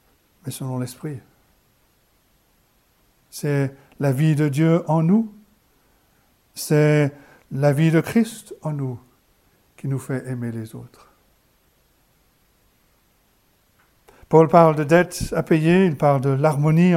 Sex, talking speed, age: male, 115 wpm, 60-79